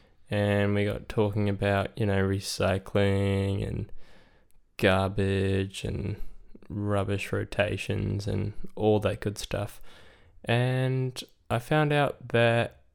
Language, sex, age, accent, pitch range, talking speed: English, male, 10-29, Australian, 100-110 Hz, 105 wpm